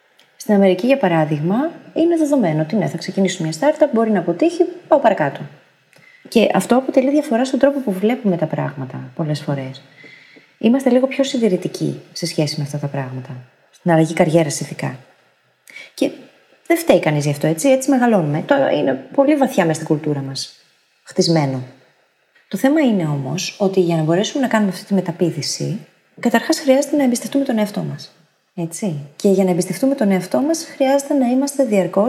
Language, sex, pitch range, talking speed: Greek, female, 160-265 Hz, 170 wpm